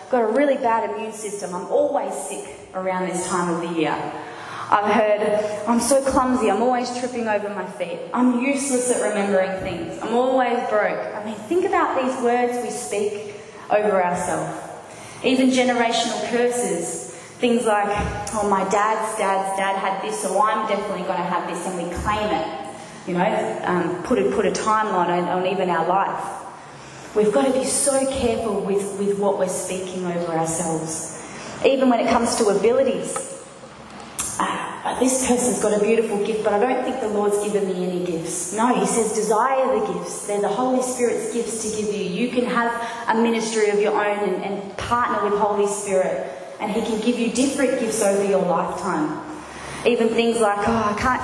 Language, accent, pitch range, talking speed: English, Australian, 190-240 Hz, 185 wpm